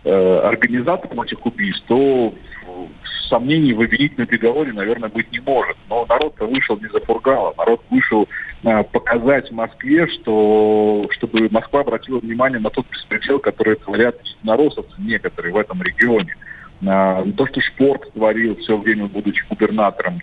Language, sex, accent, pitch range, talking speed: Russian, male, native, 105-130 Hz, 140 wpm